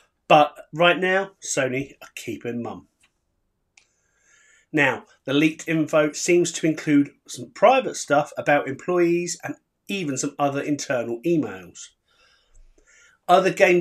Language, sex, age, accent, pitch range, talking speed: English, male, 30-49, British, 140-175 Hz, 115 wpm